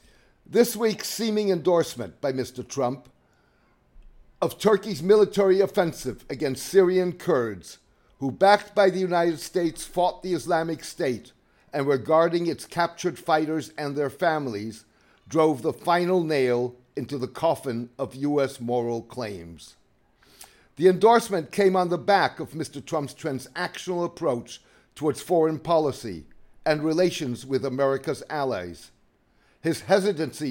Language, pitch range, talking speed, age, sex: English, 140-185 Hz, 130 wpm, 50-69, male